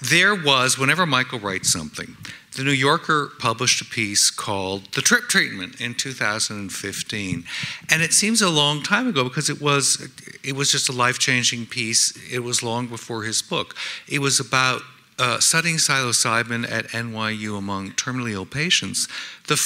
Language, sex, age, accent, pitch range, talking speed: English, male, 60-79, American, 115-145 Hz, 160 wpm